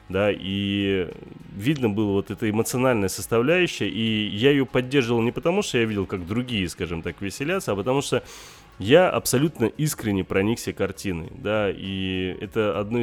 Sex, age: male, 20-39